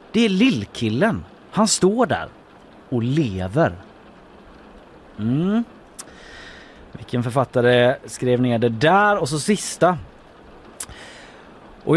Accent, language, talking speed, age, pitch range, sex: native, Swedish, 95 wpm, 30-49, 110-165 Hz, male